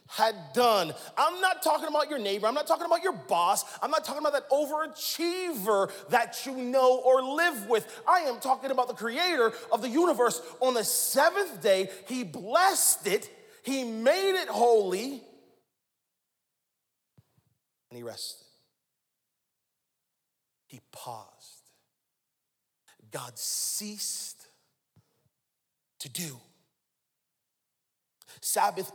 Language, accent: English, American